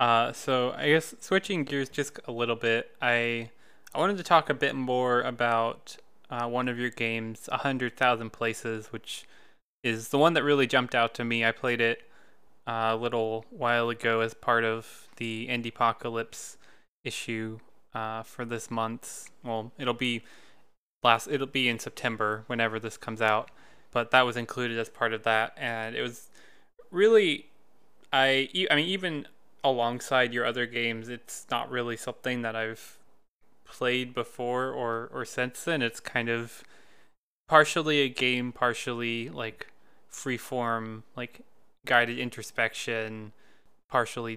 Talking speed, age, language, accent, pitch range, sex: 155 wpm, 20-39, English, American, 115-130 Hz, male